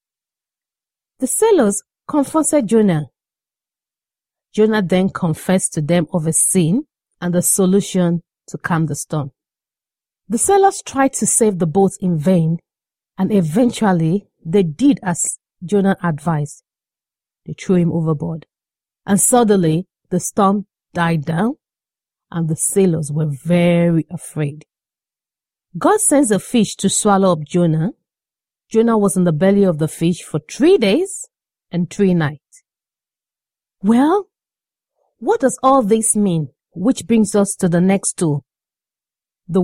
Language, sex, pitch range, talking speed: English, female, 165-220 Hz, 130 wpm